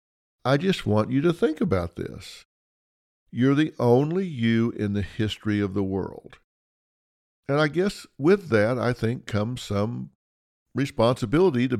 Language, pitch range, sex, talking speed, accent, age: English, 100-145 Hz, male, 145 wpm, American, 50-69